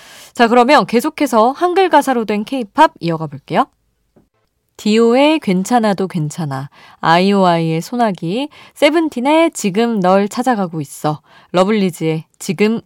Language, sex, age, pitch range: Korean, female, 20-39, 160-255 Hz